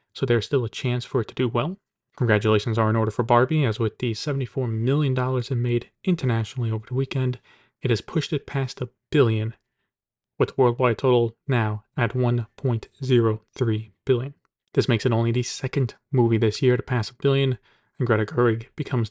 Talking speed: 185 wpm